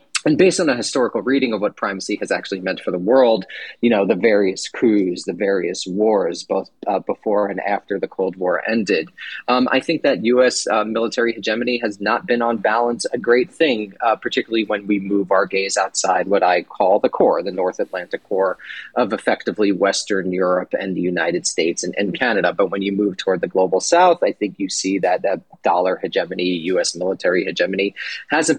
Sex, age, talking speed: male, 30-49, 200 wpm